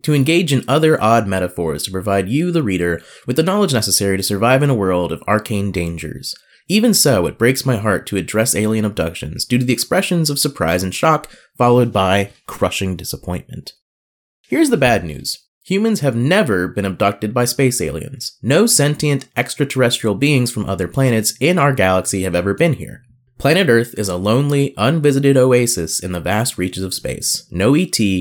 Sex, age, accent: male, 20-39, American